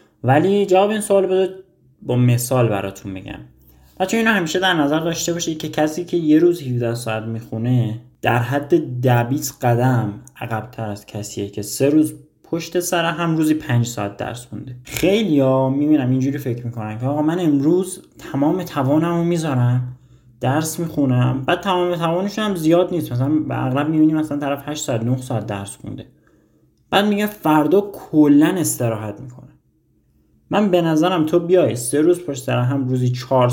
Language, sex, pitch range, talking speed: Persian, male, 120-160 Hz, 160 wpm